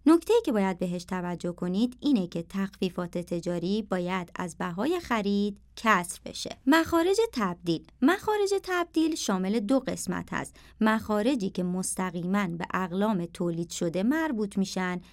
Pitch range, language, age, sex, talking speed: 180-245 Hz, Persian, 30-49, male, 130 wpm